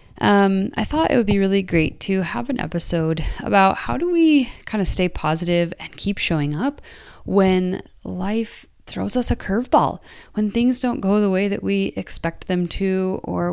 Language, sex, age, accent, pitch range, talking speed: English, female, 20-39, American, 155-195 Hz, 180 wpm